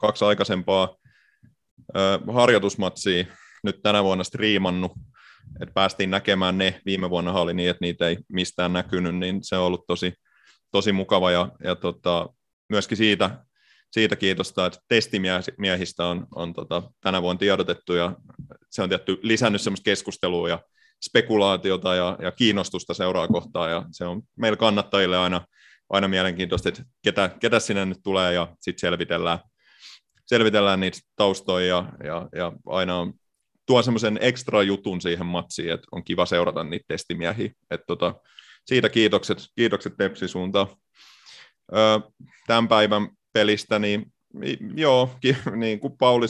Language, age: Finnish, 30-49